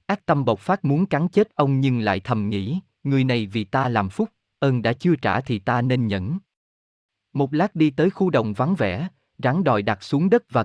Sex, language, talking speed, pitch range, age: male, Vietnamese, 225 wpm, 115-170 Hz, 20-39